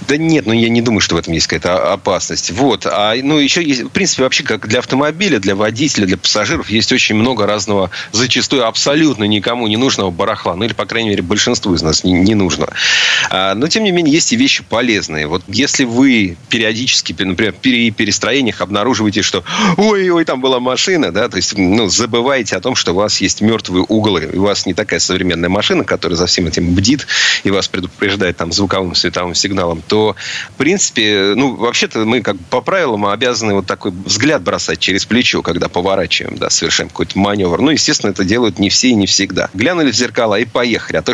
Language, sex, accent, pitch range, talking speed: Russian, male, native, 95-125 Hz, 205 wpm